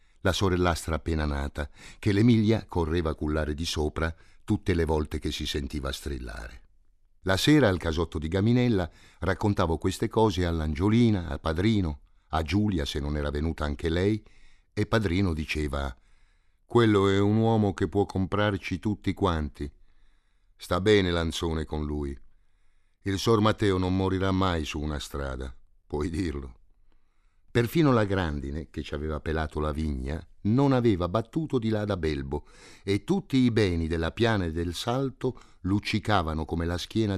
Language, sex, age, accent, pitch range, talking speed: Italian, male, 50-69, native, 75-100 Hz, 155 wpm